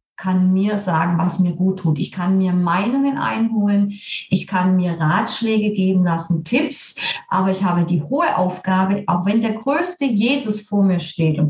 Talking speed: 175 wpm